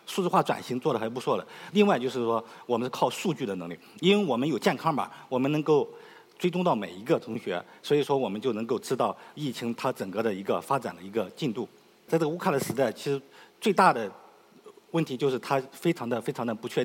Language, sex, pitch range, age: Chinese, male, 125-180 Hz, 50-69